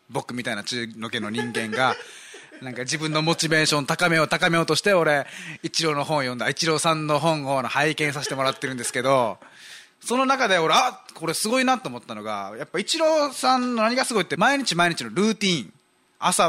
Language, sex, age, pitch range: Japanese, male, 20-39, 140-205 Hz